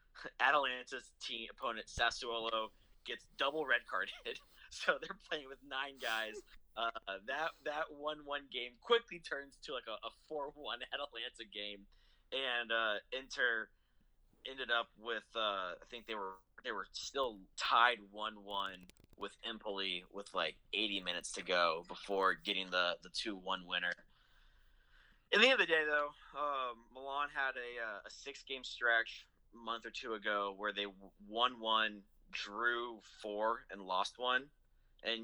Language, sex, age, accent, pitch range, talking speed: English, male, 20-39, American, 95-125 Hz, 155 wpm